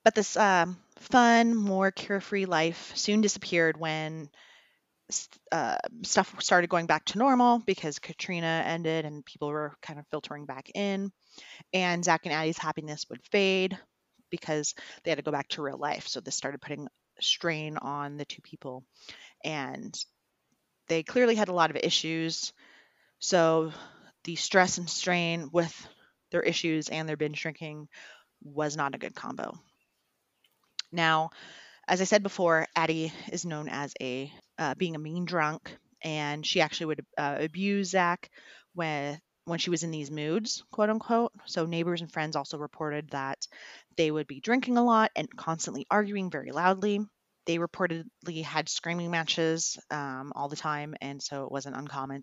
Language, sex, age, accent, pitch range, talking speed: English, female, 30-49, American, 150-185 Hz, 160 wpm